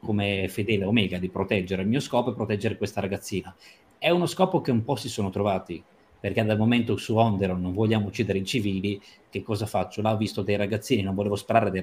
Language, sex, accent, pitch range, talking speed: Italian, male, native, 100-120 Hz, 215 wpm